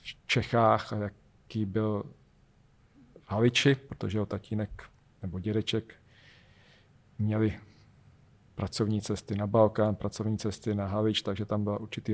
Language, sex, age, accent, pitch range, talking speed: Czech, male, 40-59, native, 105-115 Hz, 115 wpm